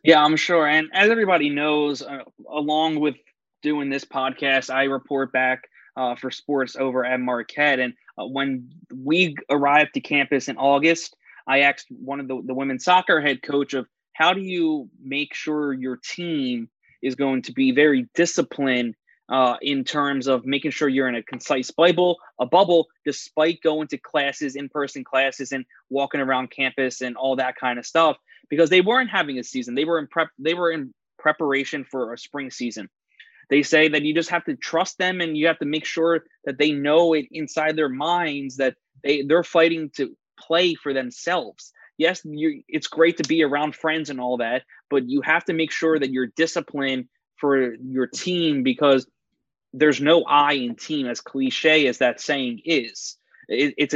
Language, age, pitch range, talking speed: English, 20-39, 135-165 Hz, 190 wpm